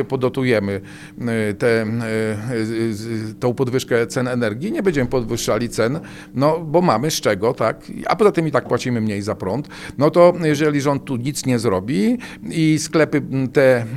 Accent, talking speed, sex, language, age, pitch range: native, 155 wpm, male, Polish, 40-59, 125-155 Hz